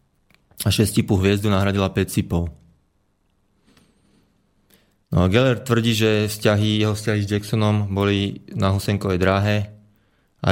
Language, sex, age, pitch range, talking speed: Slovak, male, 20-39, 95-105 Hz, 110 wpm